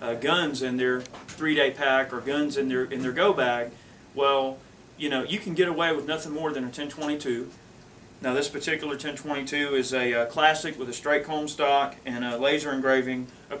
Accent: American